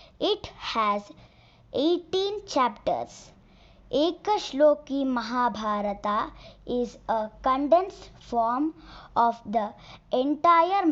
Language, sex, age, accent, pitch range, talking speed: Hindi, male, 20-39, native, 230-320 Hz, 90 wpm